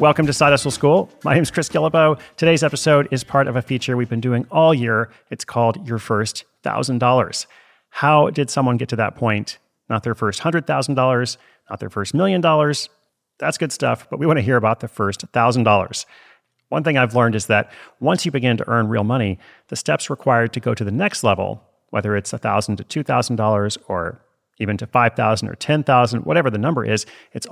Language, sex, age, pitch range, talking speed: English, male, 30-49, 110-140 Hz, 220 wpm